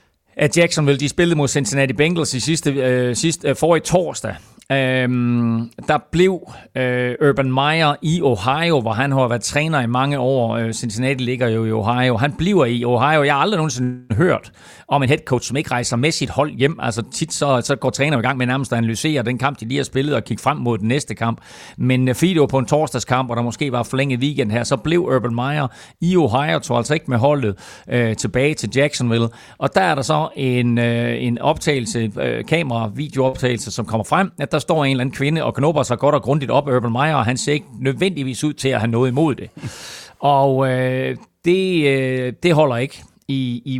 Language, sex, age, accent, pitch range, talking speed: Danish, male, 40-59, native, 120-145 Hz, 220 wpm